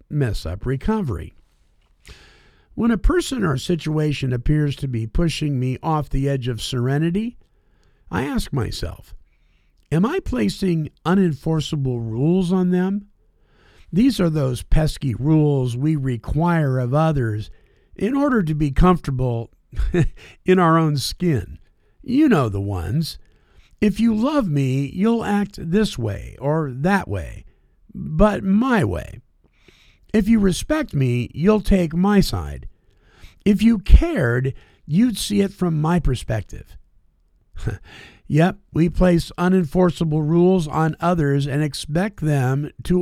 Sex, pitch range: male, 125-185 Hz